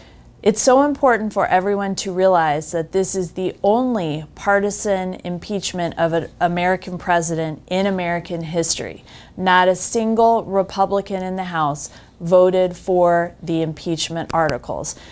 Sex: female